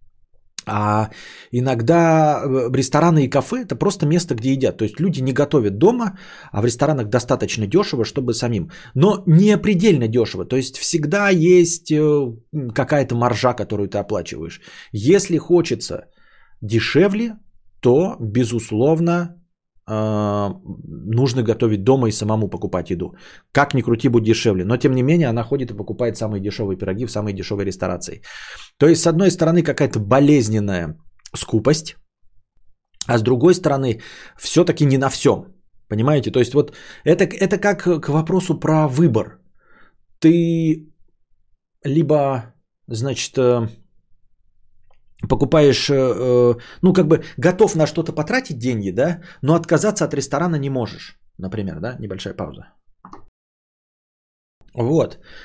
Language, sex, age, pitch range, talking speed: Bulgarian, male, 20-39, 110-155 Hz, 130 wpm